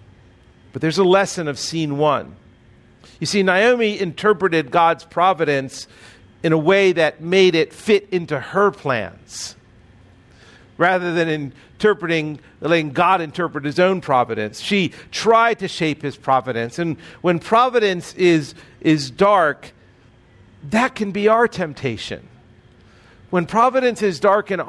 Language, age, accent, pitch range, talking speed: English, 50-69, American, 120-190 Hz, 130 wpm